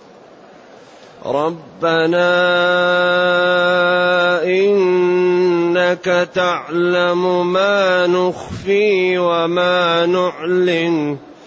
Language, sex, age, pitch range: Arabic, male, 30-49, 165-180 Hz